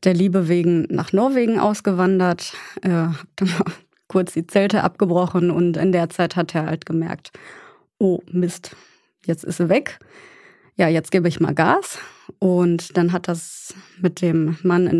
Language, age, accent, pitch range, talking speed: German, 20-39, German, 170-195 Hz, 160 wpm